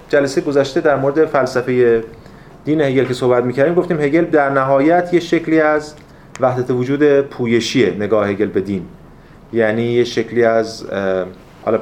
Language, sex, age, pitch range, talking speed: Persian, male, 30-49, 120-165 Hz, 140 wpm